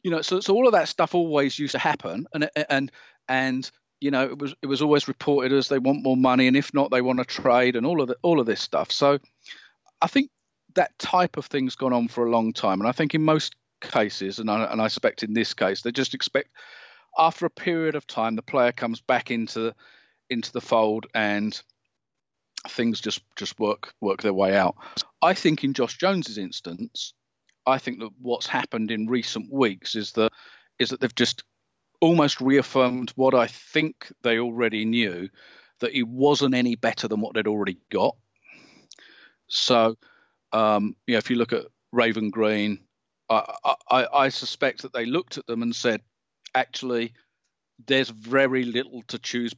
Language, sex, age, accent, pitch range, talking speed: English, male, 40-59, British, 115-140 Hz, 195 wpm